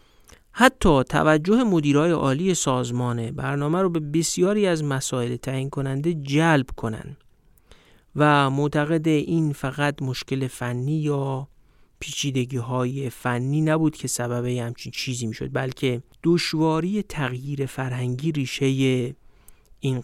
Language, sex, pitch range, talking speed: Persian, male, 130-165 Hz, 110 wpm